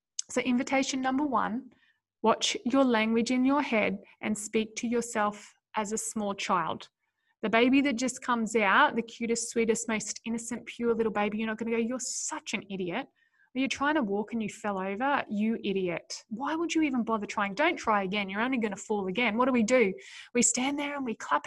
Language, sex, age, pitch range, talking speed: English, female, 10-29, 220-295 Hz, 210 wpm